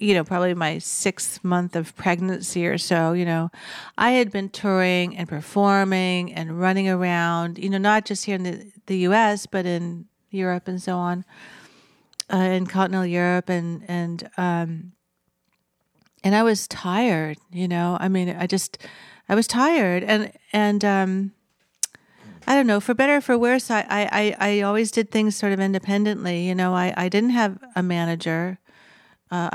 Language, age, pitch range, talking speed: English, 40-59, 180-210 Hz, 175 wpm